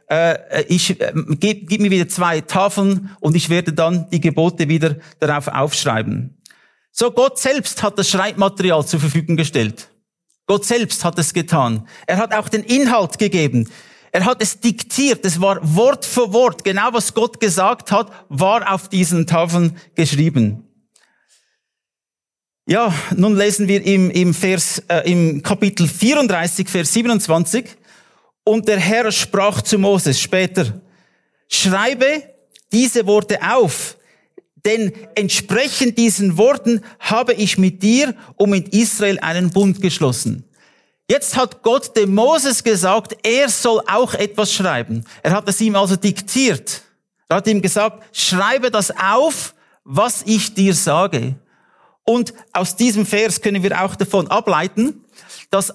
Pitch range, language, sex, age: 170-220 Hz, English, male, 50-69